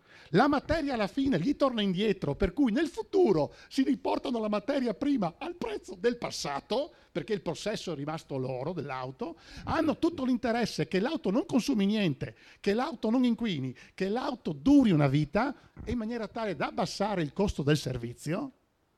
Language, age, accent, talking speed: Italian, 50-69, native, 170 wpm